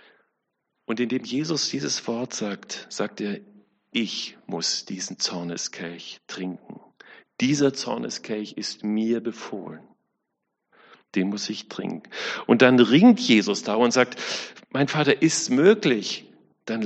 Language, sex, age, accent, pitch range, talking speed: German, male, 40-59, German, 95-120 Hz, 120 wpm